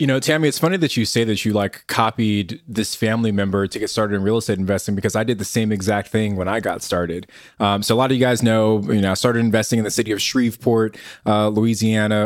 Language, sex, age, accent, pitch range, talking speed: English, male, 20-39, American, 105-120 Hz, 260 wpm